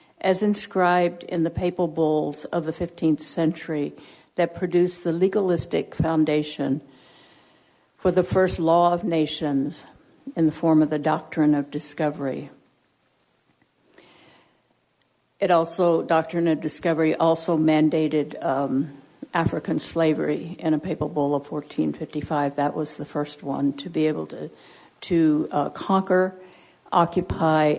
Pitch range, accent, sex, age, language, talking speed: 150-175 Hz, American, female, 60-79, English, 125 wpm